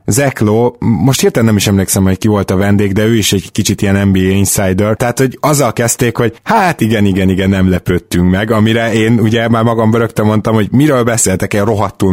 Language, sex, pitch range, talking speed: Hungarian, male, 95-115 Hz, 215 wpm